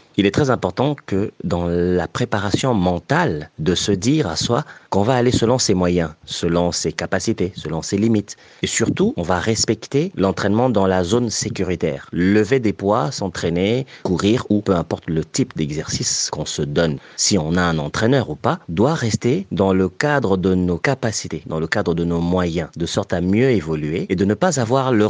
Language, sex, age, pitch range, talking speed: French, male, 30-49, 90-120 Hz, 195 wpm